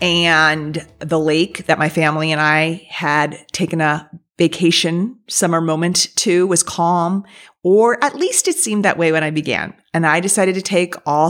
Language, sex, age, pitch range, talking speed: English, female, 40-59, 150-180 Hz, 175 wpm